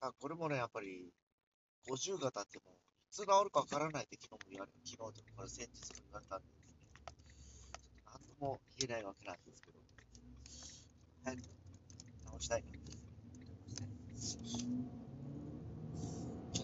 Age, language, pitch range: 40-59, Japanese, 90-130 Hz